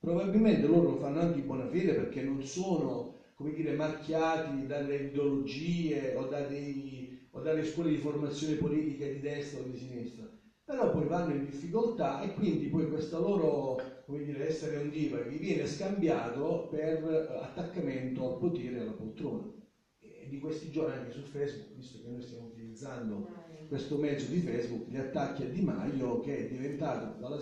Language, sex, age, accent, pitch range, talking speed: Italian, male, 40-59, native, 130-160 Hz, 175 wpm